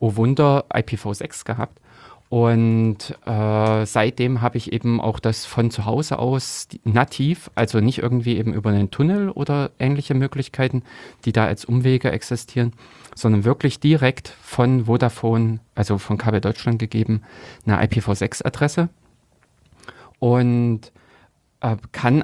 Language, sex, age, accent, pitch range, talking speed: German, male, 30-49, German, 105-120 Hz, 125 wpm